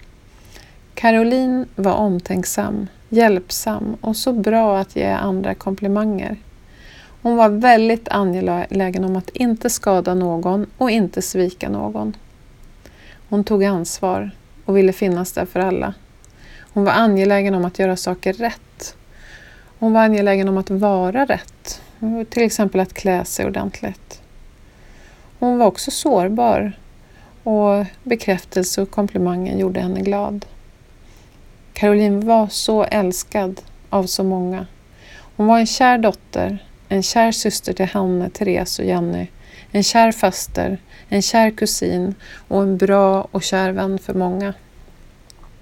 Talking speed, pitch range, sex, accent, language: 130 wpm, 185-215 Hz, female, Swedish, English